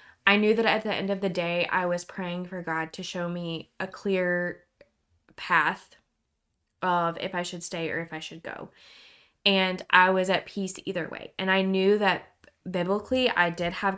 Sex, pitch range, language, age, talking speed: female, 165-185 Hz, English, 20-39, 195 wpm